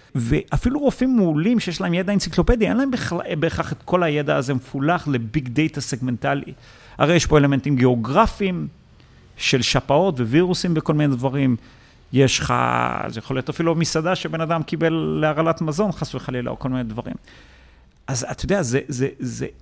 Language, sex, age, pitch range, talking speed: English, male, 40-59, 130-185 Hz, 160 wpm